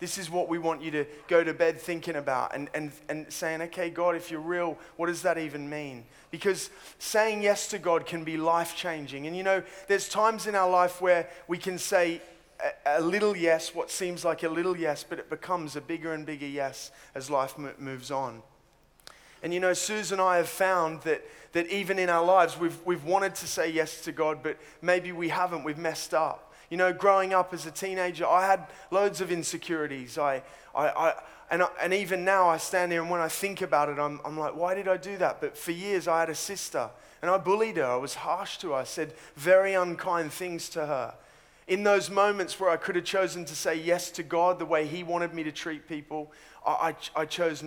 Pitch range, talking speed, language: 160-185 Hz, 230 wpm, English